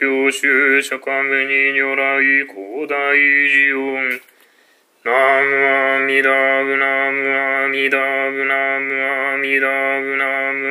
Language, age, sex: Japanese, 20-39, male